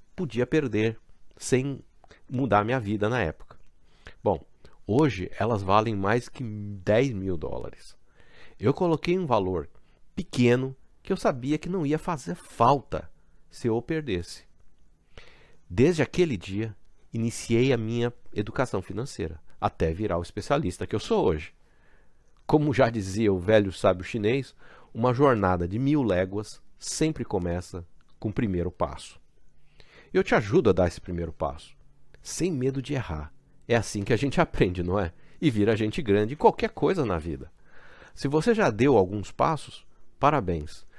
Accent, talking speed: Brazilian, 150 wpm